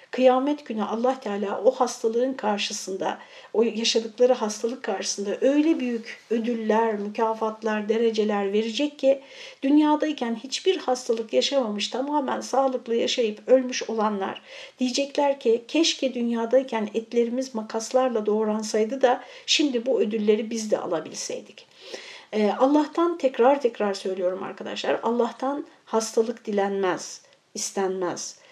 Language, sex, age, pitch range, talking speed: Turkish, female, 60-79, 205-260 Hz, 105 wpm